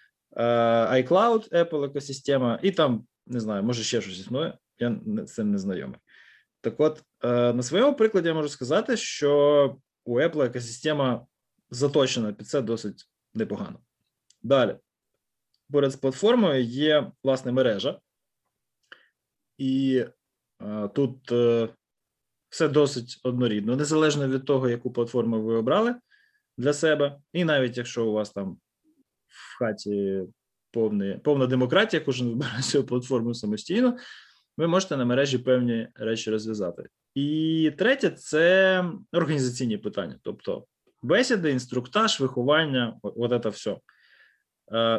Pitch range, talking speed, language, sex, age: 120-160 Hz, 120 wpm, Ukrainian, male, 20-39